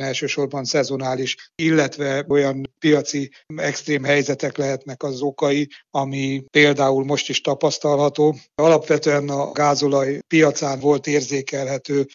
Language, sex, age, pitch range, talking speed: Hungarian, male, 60-79, 135-145 Hz, 105 wpm